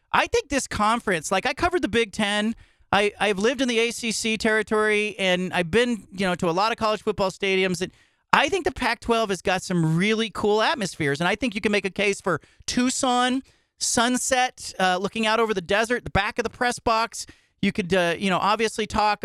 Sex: male